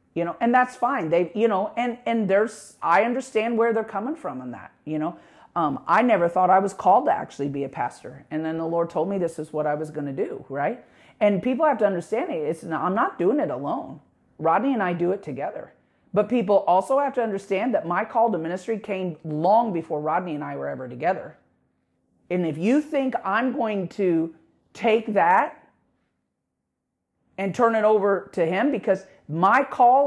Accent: American